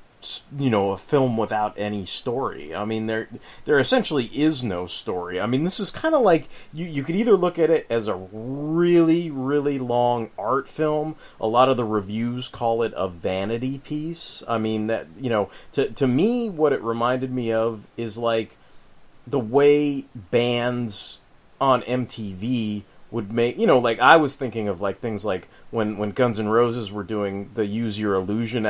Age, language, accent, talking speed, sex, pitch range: 30-49, English, American, 185 wpm, male, 105-125 Hz